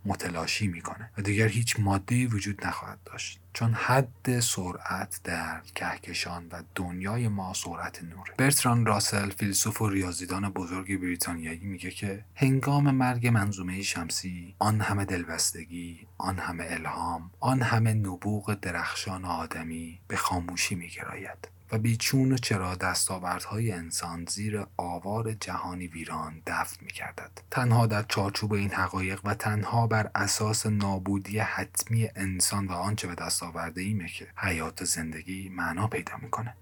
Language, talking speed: Persian, 135 wpm